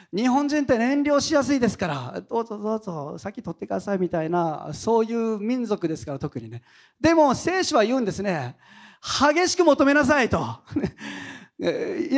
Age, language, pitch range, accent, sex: 40-59, Japanese, 170-280 Hz, native, male